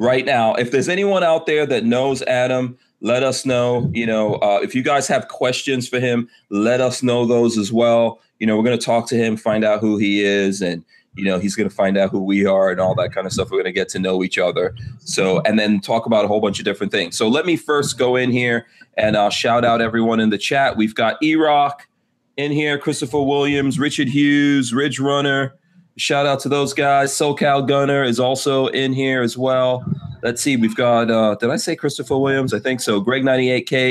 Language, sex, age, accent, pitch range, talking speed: English, male, 30-49, American, 115-145 Hz, 230 wpm